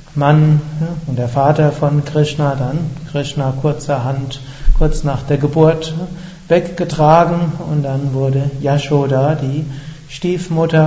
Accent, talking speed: German, 110 wpm